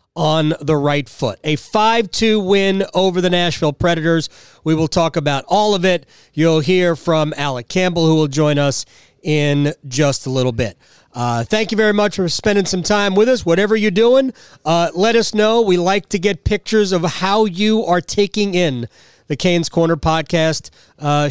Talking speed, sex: 185 wpm, male